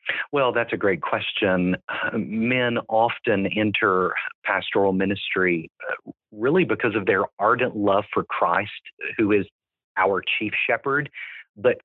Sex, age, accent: male, 40-59, American